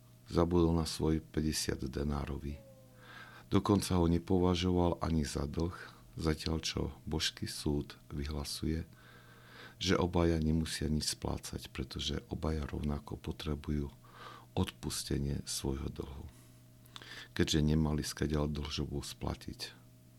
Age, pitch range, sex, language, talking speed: 50-69, 65-80 Hz, male, Slovak, 100 wpm